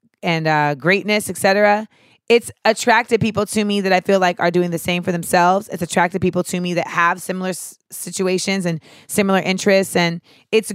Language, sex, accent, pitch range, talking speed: English, female, American, 185-220 Hz, 190 wpm